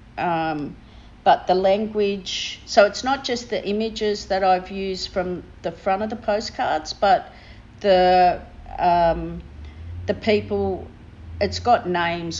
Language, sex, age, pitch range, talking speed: English, female, 50-69, 165-190 Hz, 130 wpm